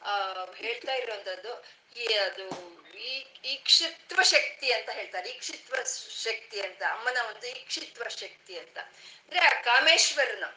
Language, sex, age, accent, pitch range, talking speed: Kannada, female, 30-49, native, 230-345 Hz, 110 wpm